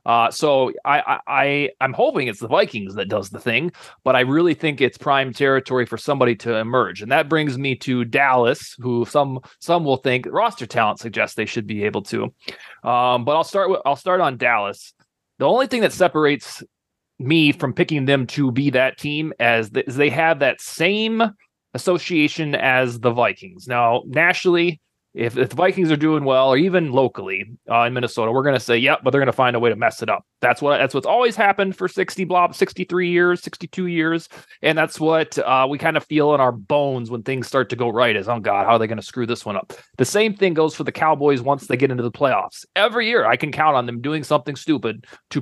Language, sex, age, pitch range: English, male, 30-49, 125-160 Hz